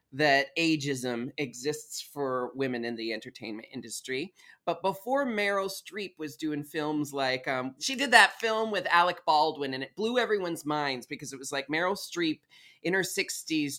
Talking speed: 170 wpm